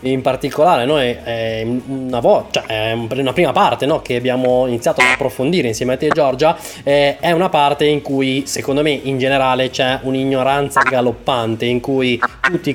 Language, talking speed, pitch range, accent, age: Italian, 175 wpm, 125-150 Hz, native, 20-39